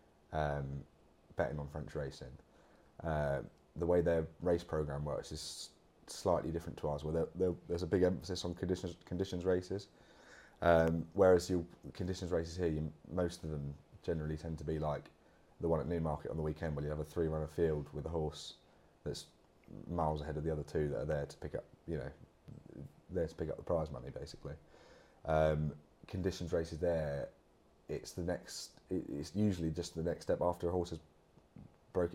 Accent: British